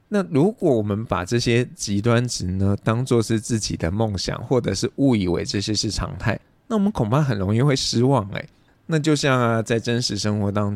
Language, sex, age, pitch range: Chinese, male, 20-39, 95-115 Hz